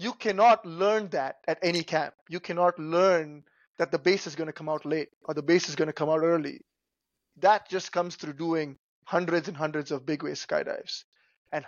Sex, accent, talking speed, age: male, Indian, 210 wpm, 20-39